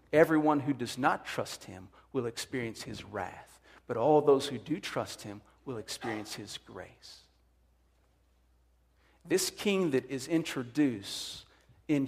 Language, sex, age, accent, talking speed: English, male, 50-69, American, 135 wpm